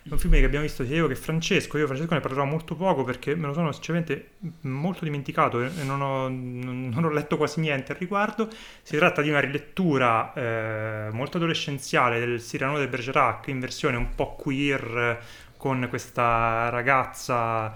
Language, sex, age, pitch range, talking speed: Italian, male, 30-49, 115-145 Hz, 170 wpm